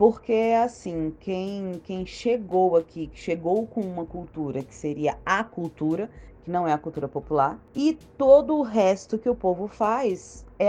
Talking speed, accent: 170 wpm, Brazilian